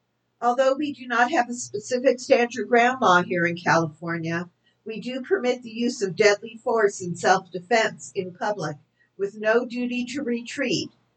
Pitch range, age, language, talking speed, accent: 175-245 Hz, 50-69, English, 160 wpm, American